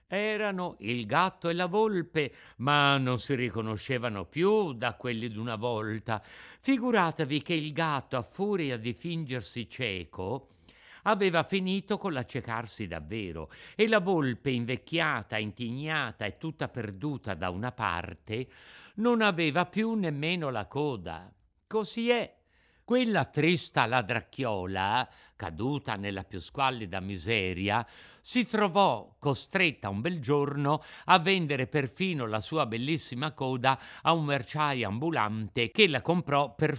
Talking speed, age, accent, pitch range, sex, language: 125 wpm, 60-79, native, 115-190 Hz, male, Italian